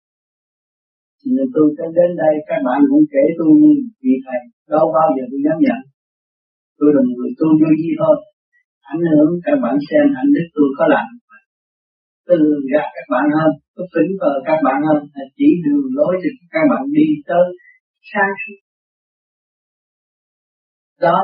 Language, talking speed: Vietnamese, 165 wpm